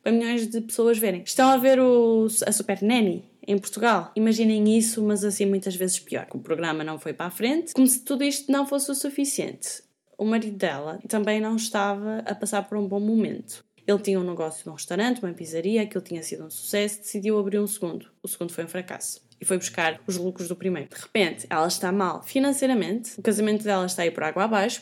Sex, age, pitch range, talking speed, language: female, 10-29, 170-230 Hz, 220 wpm, Portuguese